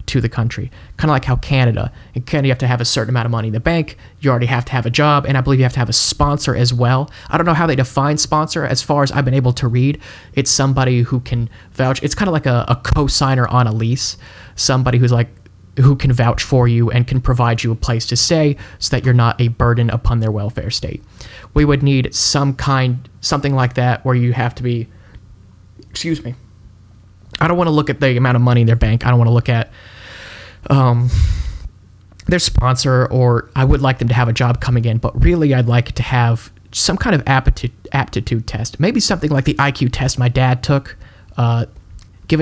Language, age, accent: English, 20-39, American